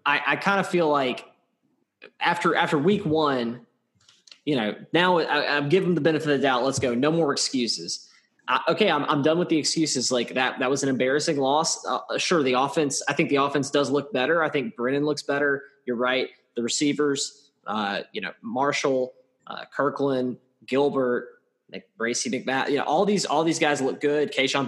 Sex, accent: male, American